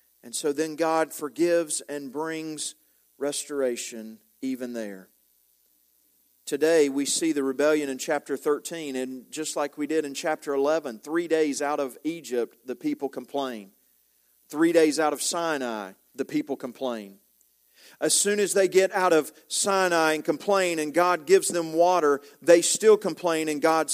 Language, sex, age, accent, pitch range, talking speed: English, male, 40-59, American, 155-205 Hz, 155 wpm